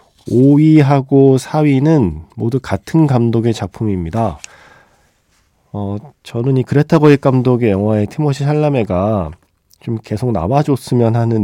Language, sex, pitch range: Korean, male, 90-135 Hz